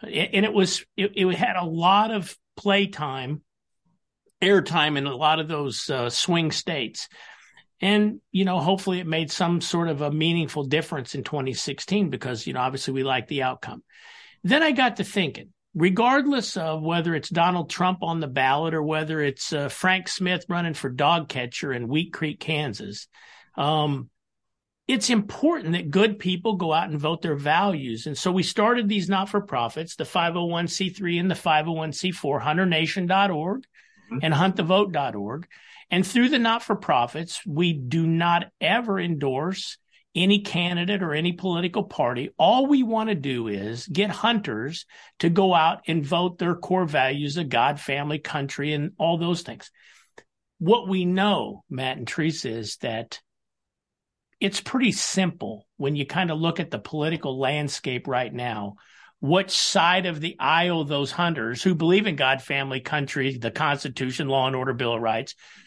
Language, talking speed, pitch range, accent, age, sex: English, 165 wpm, 145-190 Hz, American, 50-69, male